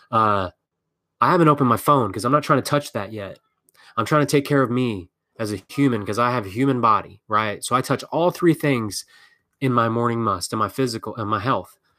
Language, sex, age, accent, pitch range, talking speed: English, male, 20-39, American, 105-135 Hz, 235 wpm